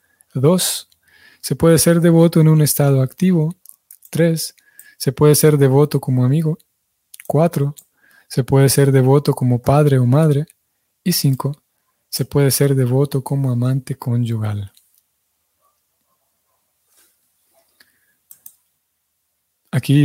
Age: 20-39